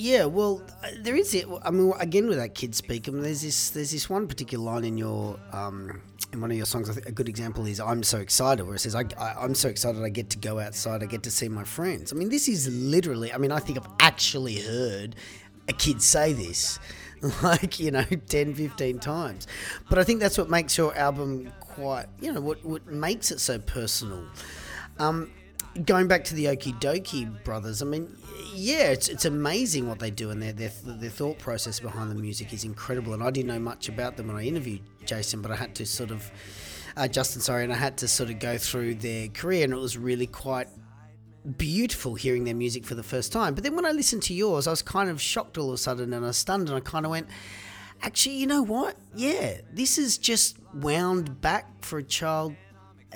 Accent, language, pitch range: Australian, English, 110-155 Hz